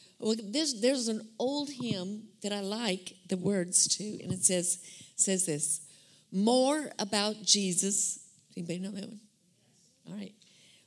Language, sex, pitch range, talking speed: English, female, 180-220 Hz, 140 wpm